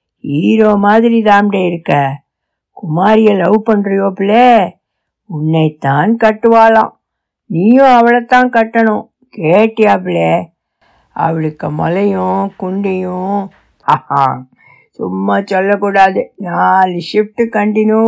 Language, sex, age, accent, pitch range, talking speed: Tamil, female, 60-79, native, 180-245 Hz, 50 wpm